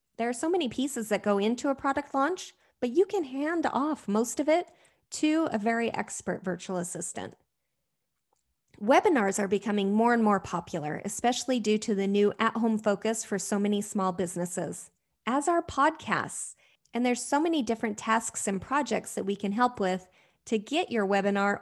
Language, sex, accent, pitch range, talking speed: English, female, American, 200-275 Hz, 180 wpm